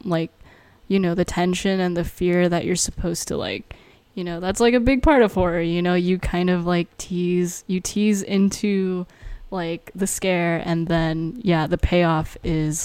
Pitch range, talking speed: 175-210 Hz, 190 wpm